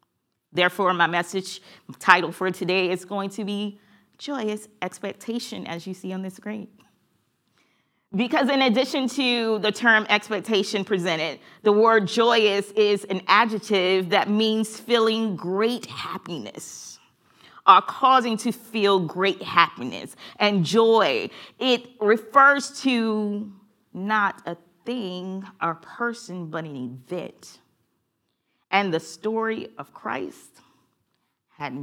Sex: female